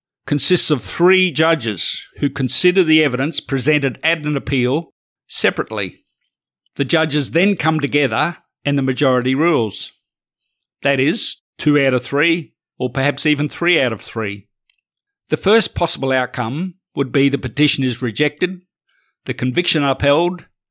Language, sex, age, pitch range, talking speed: English, male, 50-69, 130-155 Hz, 140 wpm